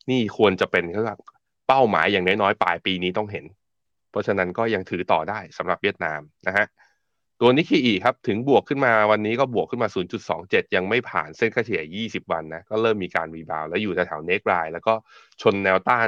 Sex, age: male, 20-39